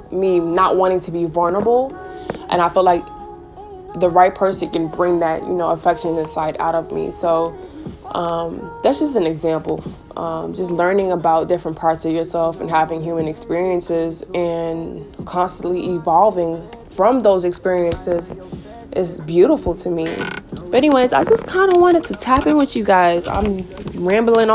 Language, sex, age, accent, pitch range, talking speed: English, female, 20-39, American, 170-190 Hz, 160 wpm